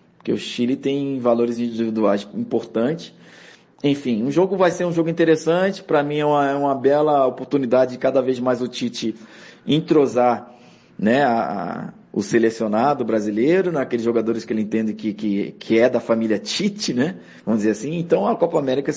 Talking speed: 180 wpm